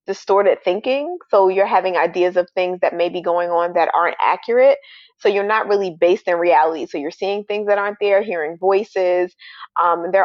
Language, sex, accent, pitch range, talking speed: English, female, American, 175-205 Hz, 200 wpm